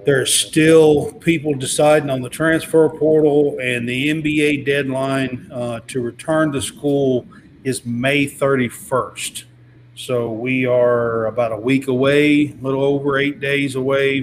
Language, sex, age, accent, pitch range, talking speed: English, male, 40-59, American, 120-150 Hz, 140 wpm